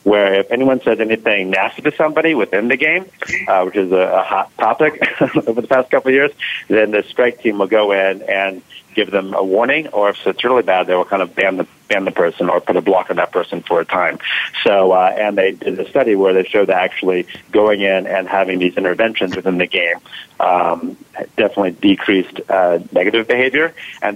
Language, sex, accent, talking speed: English, male, American, 220 wpm